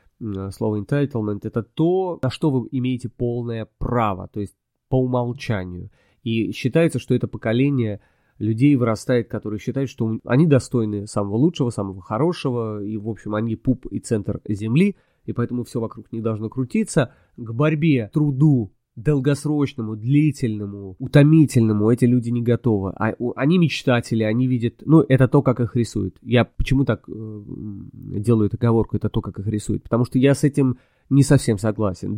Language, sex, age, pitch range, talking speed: Russian, male, 20-39, 110-135 Hz, 160 wpm